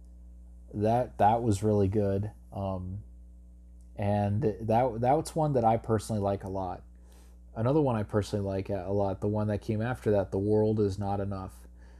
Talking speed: 170 wpm